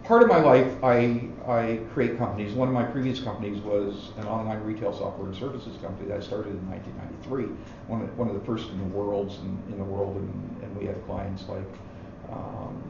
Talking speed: 215 wpm